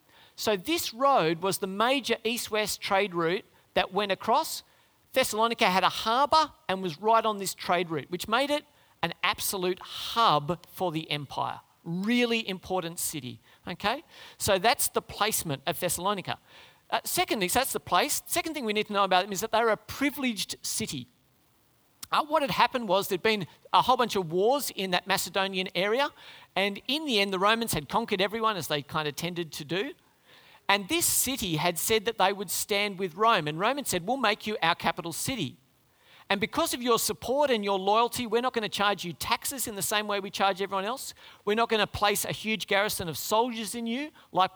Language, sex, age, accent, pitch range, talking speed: English, male, 40-59, Australian, 180-225 Hz, 205 wpm